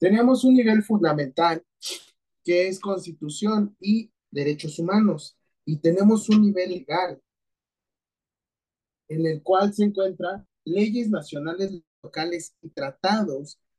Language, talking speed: Spanish, 110 wpm